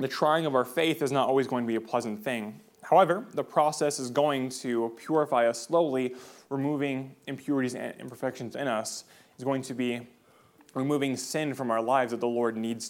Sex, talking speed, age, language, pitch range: male, 195 wpm, 20-39, English, 125-155 Hz